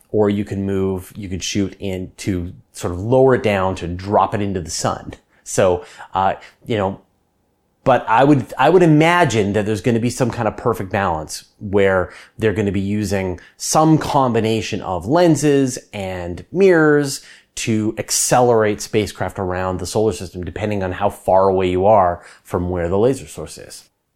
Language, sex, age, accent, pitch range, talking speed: English, male, 30-49, American, 95-145 Hz, 180 wpm